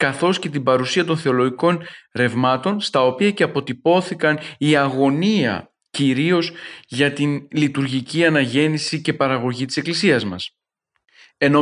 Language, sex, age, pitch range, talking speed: Greek, male, 40-59, 135-170 Hz, 125 wpm